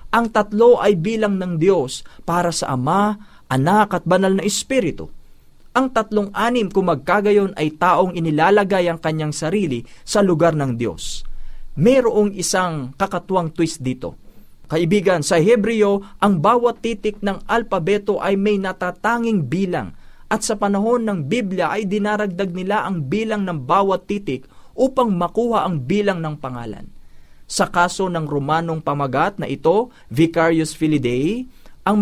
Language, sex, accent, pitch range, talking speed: Filipino, male, native, 160-210 Hz, 140 wpm